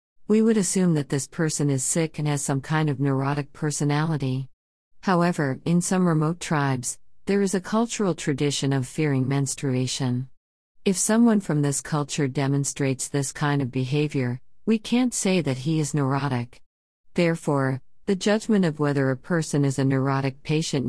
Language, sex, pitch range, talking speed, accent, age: English, female, 130-160 Hz, 160 wpm, American, 50-69